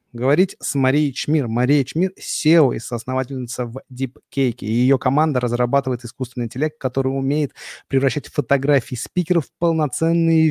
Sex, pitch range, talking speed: male, 125-145 Hz, 135 wpm